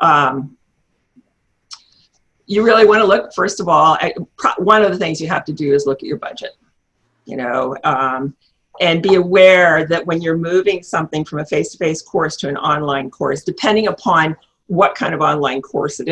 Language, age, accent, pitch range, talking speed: English, 50-69, American, 155-215 Hz, 190 wpm